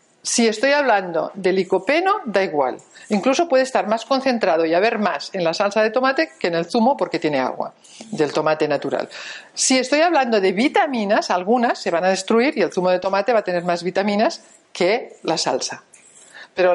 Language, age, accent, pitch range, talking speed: Spanish, 50-69, Spanish, 180-225 Hz, 195 wpm